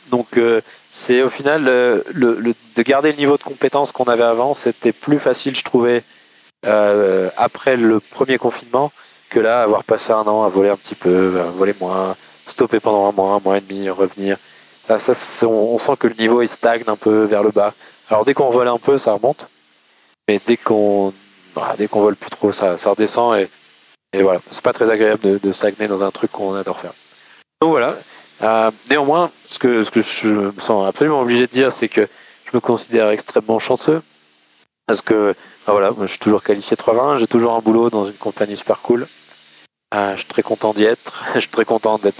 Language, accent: French, French